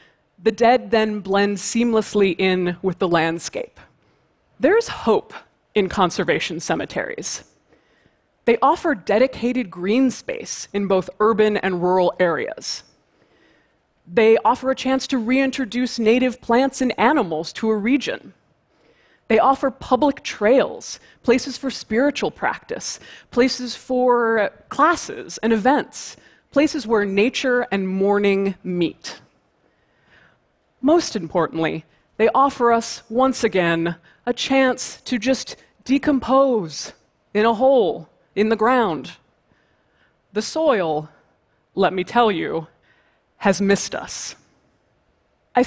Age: 20-39